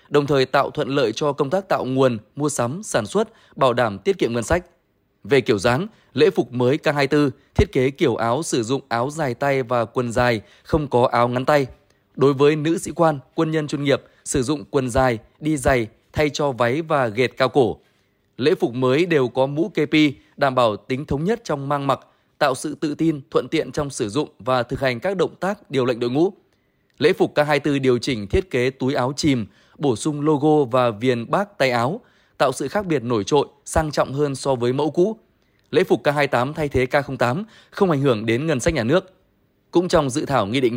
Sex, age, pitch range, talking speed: male, 20-39, 130-160 Hz, 220 wpm